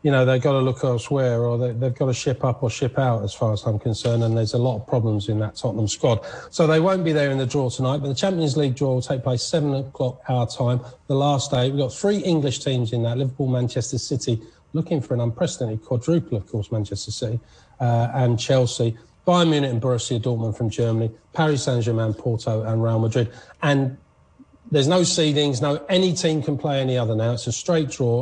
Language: English